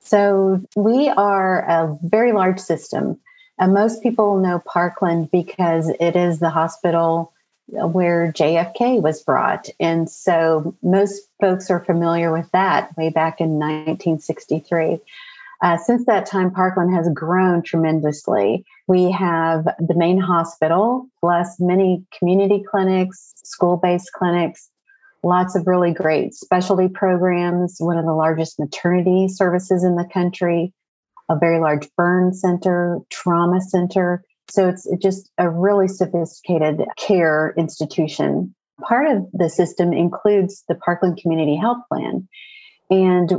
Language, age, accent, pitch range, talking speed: English, 40-59, American, 165-195 Hz, 130 wpm